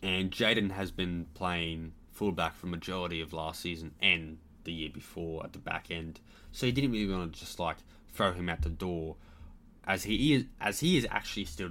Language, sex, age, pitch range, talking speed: English, male, 20-39, 85-100 Hz, 210 wpm